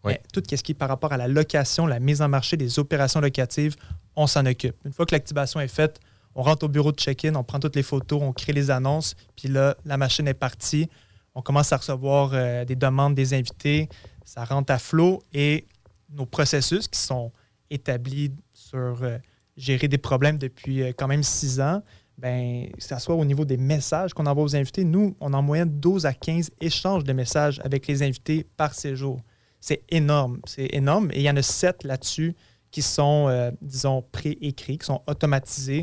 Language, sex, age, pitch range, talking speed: French, male, 20-39, 130-150 Hz, 205 wpm